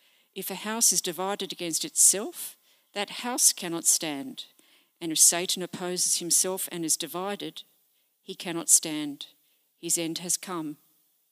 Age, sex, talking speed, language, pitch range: 50-69, female, 140 wpm, English, 165-195 Hz